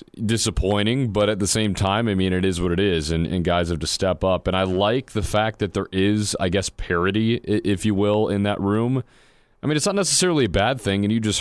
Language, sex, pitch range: English, male, 90-110 Hz